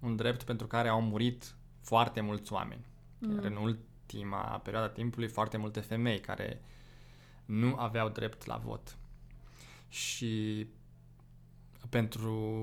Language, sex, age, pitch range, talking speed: Romanian, male, 20-39, 100-120 Hz, 120 wpm